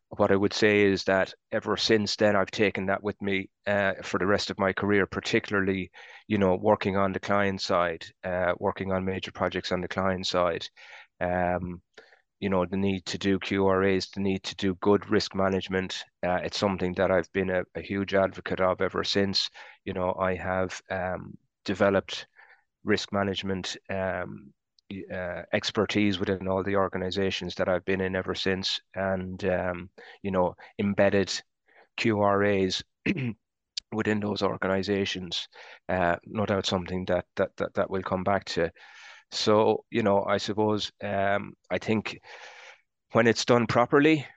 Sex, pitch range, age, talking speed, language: male, 95-100 Hz, 30-49, 160 wpm, English